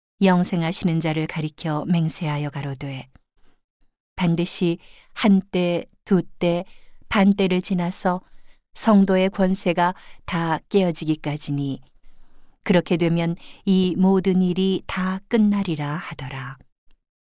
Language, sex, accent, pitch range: Korean, female, native, 155-185 Hz